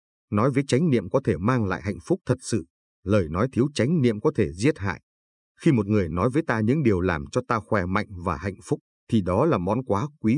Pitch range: 95-130 Hz